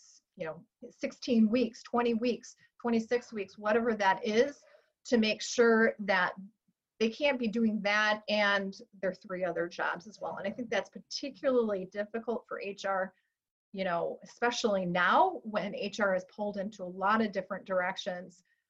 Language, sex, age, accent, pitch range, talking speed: English, female, 30-49, American, 190-240 Hz, 155 wpm